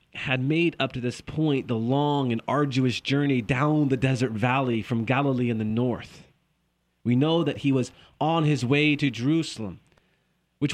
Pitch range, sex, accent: 125-170 Hz, male, American